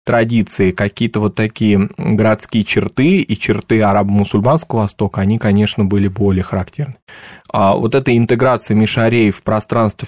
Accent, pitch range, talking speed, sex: native, 100-125 Hz, 130 wpm, male